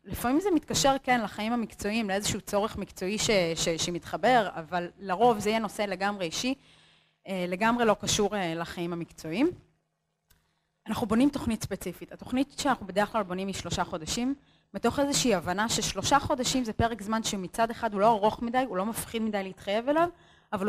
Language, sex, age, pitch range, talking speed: Hebrew, female, 20-39, 195-255 Hz, 165 wpm